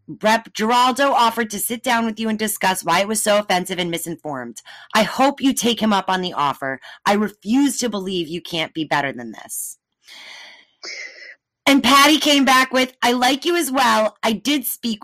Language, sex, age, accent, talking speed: English, female, 30-49, American, 195 wpm